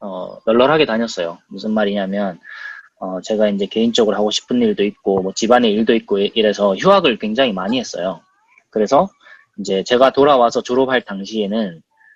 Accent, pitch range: native, 110-175 Hz